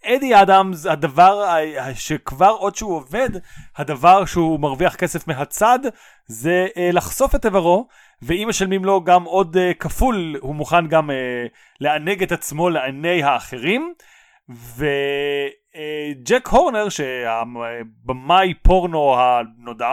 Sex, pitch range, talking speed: male, 140-200 Hz, 115 wpm